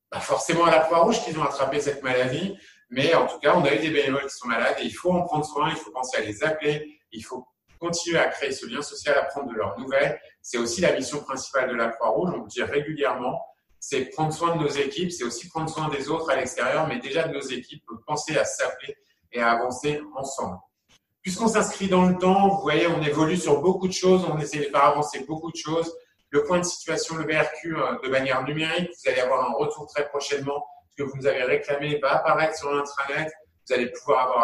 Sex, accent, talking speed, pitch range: male, French, 240 wpm, 135-165 Hz